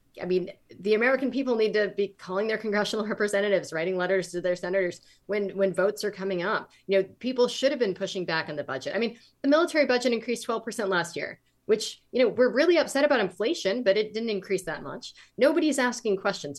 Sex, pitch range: female, 170-225 Hz